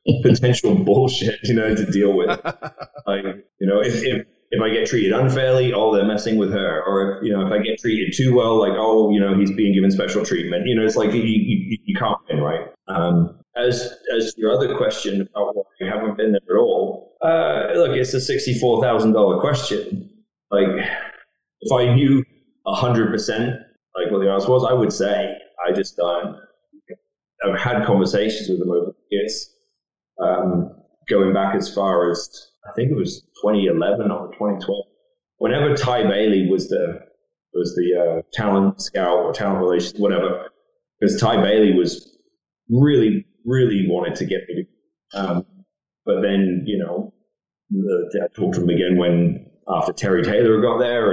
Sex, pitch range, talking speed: male, 100-165 Hz, 185 wpm